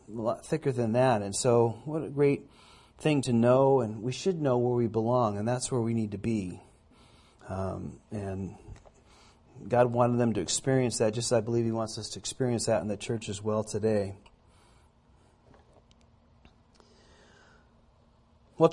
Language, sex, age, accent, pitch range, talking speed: Finnish, male, 40-59, American, 120-155 Hz, 165 wpm